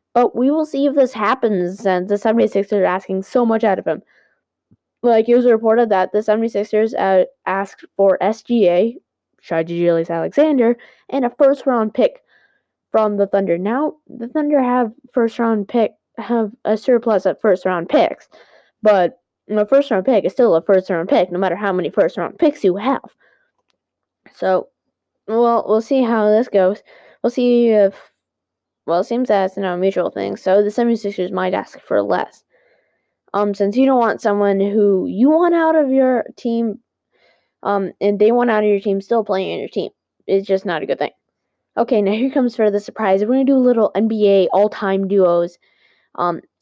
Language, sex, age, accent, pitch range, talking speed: English, female, 10-29, American, 195-245 Hz, 190 wpm